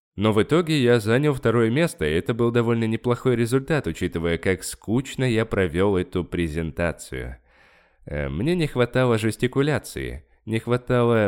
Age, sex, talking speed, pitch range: 20-39, male, 140 wpm, 85-130 Hz